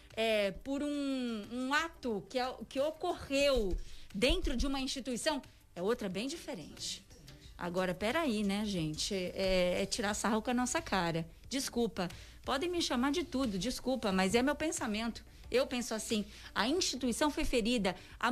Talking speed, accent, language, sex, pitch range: 150 wpm, Brazilian, Portuguese, female, 220-290 Hz